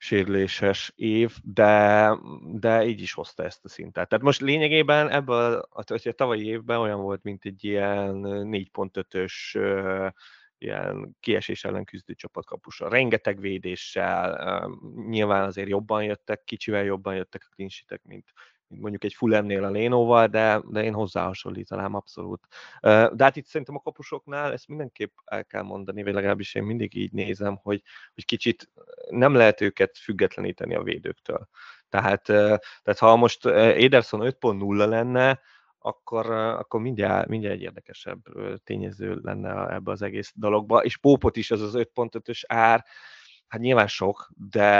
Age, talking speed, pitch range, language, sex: 30-49, 145 wpm, 100-120 Hz, Hungarian, male